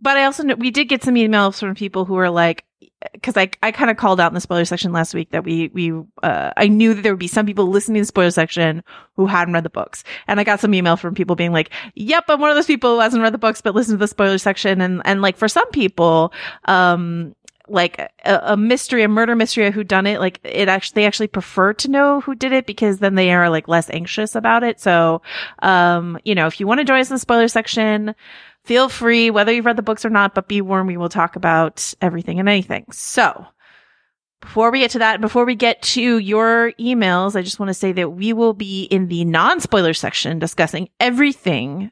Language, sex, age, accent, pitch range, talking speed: English, female, 30-49, American, 175-230 Hz, 250 wpm